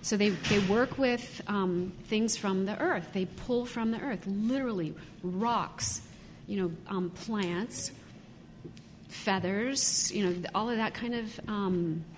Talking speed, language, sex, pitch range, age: 150 wpm, English, female, 180-230 Hz, 40-59